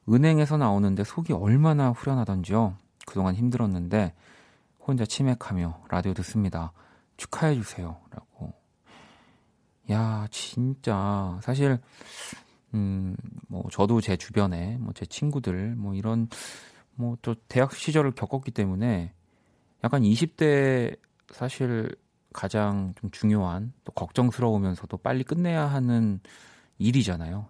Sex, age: male, 30-49